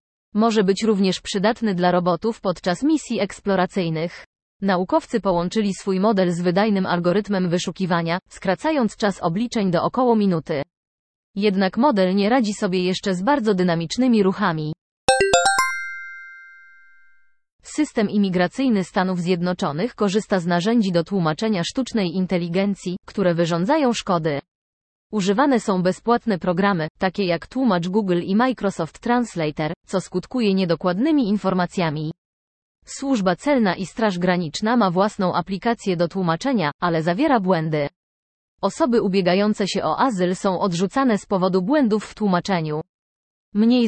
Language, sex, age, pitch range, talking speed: Polish, female, 20-39, 175-215 Hz, 120 wpm